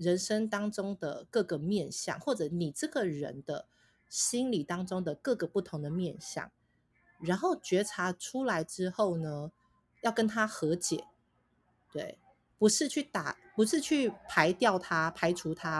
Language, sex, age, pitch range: Chinese, female, 30-49, 160-220 Hz